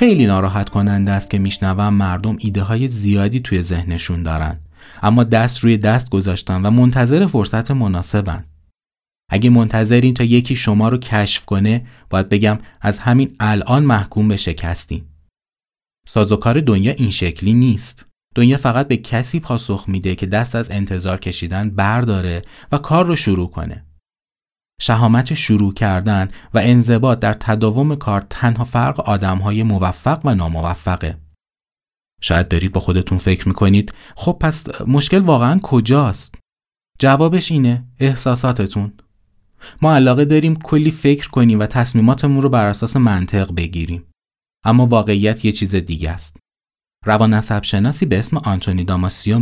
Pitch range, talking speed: 95-120 Hz, 135 wpm